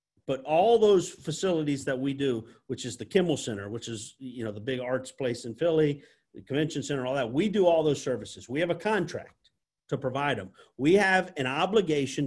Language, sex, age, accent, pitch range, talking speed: English, male, 50-69, American, 130-180 Hz, 210 wpm